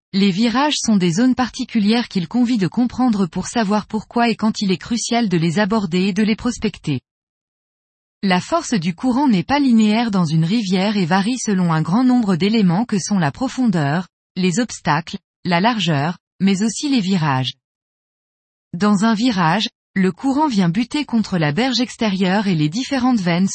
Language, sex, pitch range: French, female, 185-240 Hz